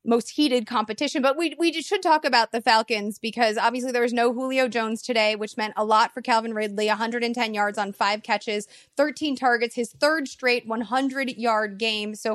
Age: 20-39